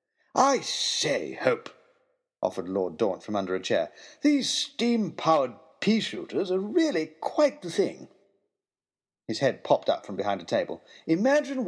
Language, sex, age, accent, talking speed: English, male, 50-69, British, 140 wpm